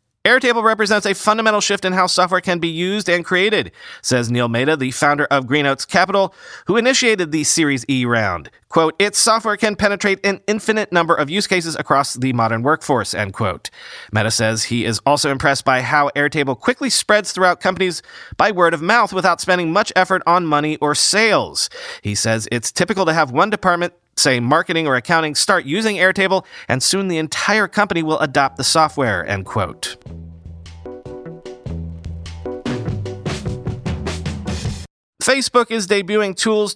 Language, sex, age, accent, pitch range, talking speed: English, male, 30-49, American, 130-200 Hz, 160 wpm